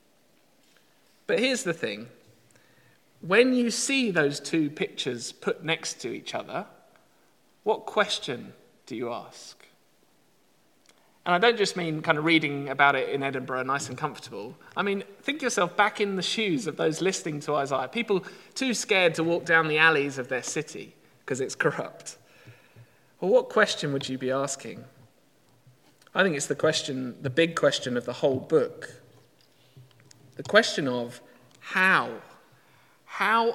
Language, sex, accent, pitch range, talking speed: English, male, British, 135-200 Hz, 155 wpm